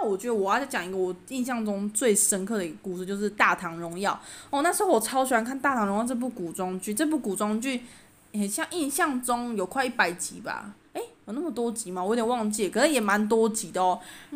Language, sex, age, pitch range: Chinese, female, 20-39, 190-260 Hz